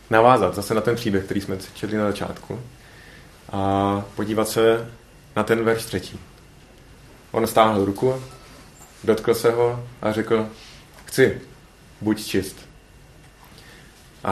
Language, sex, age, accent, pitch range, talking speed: Czech, male, 30-49, native, 95-110 Hz, 120 wpm